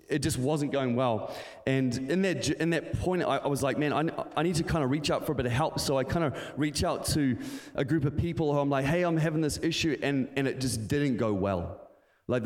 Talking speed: 270 wpm